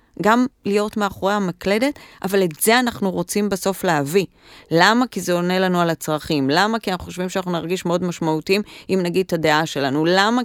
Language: Hebrew